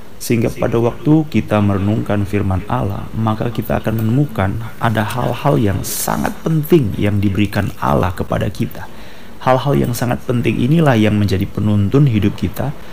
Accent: native